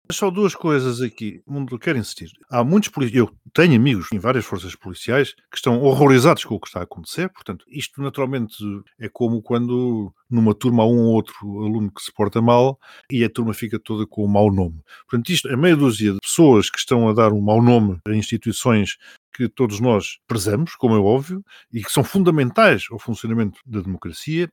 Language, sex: Portuguese, male